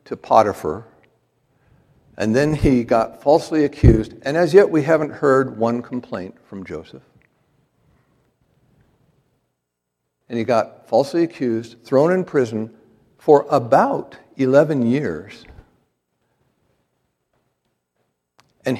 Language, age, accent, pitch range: English, 60-79, American, 110-150 Hz